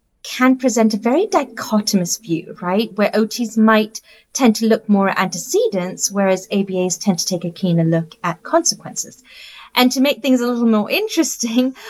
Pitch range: 185-250 Hz